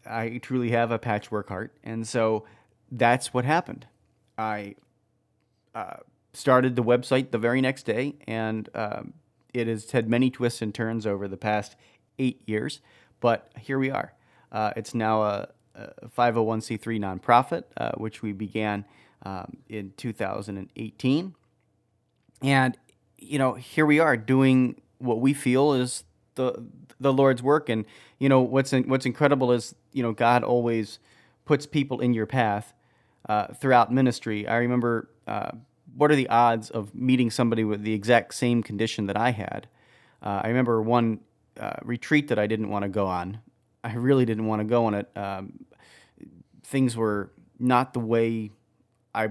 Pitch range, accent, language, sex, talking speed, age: 110-130 Hz, American, English, male, 160 wpm, 30-49